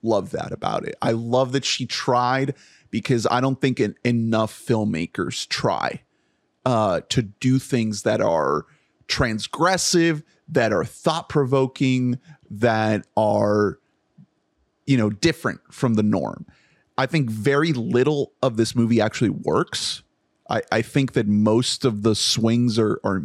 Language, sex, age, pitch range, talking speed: English, male, 30-49, 110-140 Hz, 140 wpm